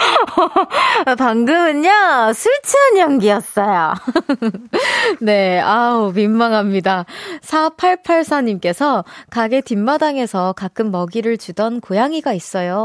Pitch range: 205-300 Hz